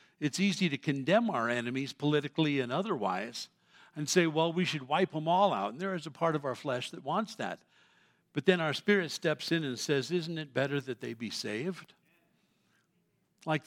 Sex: male